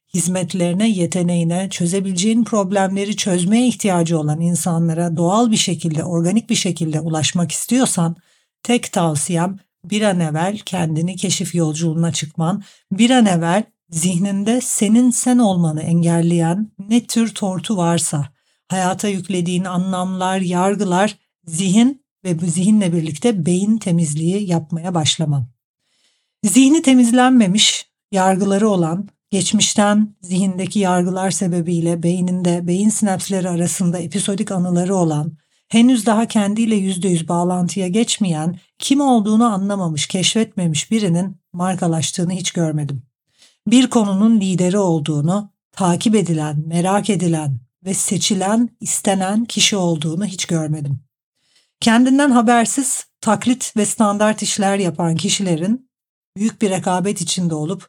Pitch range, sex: 170-210 Hz, female